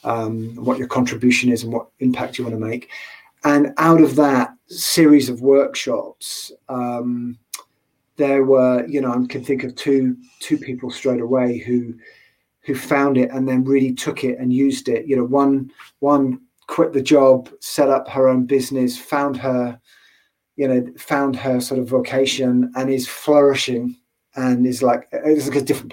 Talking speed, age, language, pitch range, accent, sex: 175 wpm, 30-49, English, 125-140 Hz, British, male